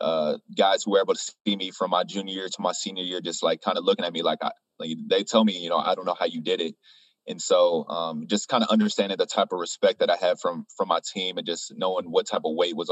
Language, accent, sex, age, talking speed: English, American, male, 20-39, 295 wpm